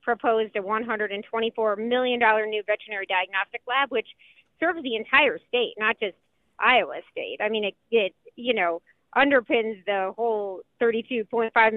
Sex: female